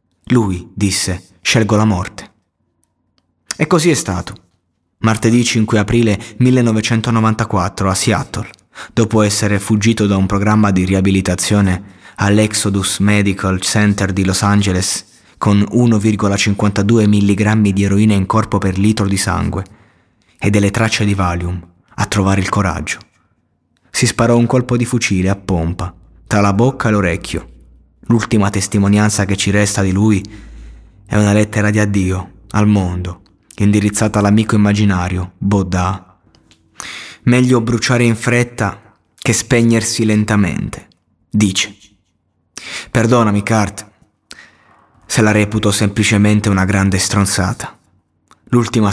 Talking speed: 120 wpm